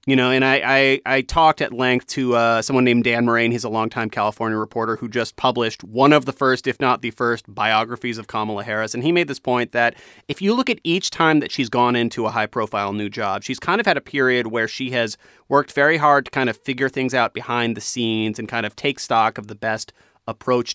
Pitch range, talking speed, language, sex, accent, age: 115-135 Hz, 245 wpm, English, male, American, 30-49